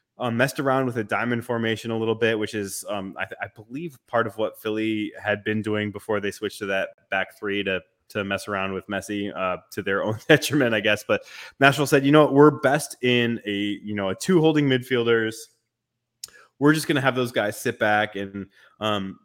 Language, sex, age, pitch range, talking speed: English, male, 20-39, 105-120 Hz, 220 wpm